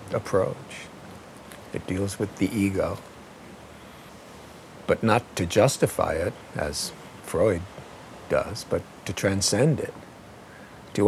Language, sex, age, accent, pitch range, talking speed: English, male, 60-79, American, 95-120 Hz, 105 wpm